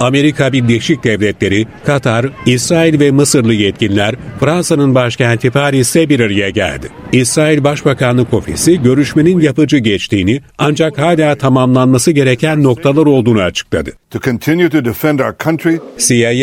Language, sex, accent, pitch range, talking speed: Turkish, male, native, 115-145 Hz, 95 wpm